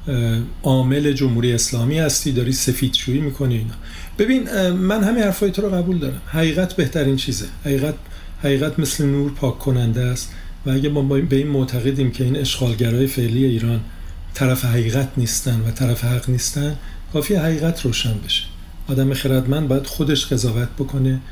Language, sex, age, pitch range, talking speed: Persian, male, 50-69, 115-140 Hz, 150 wpm